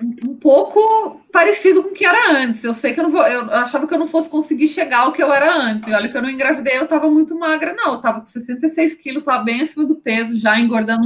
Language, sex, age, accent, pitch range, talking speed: Portuguese, female, 20-39, Brazilian, 220-285 Hz, 265 wpm